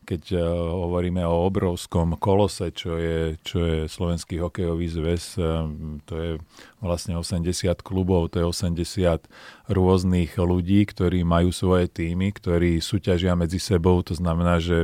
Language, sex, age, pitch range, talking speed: Slovak, male, 40-59, 90-105 Hz, 135 wpm